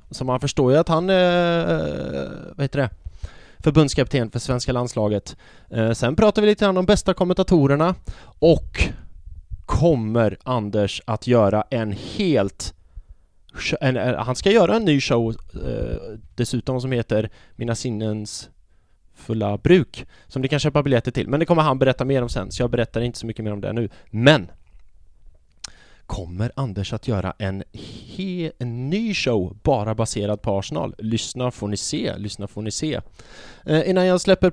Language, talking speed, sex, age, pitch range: English, 155 wpm, male, 20-39, 105-150 Hz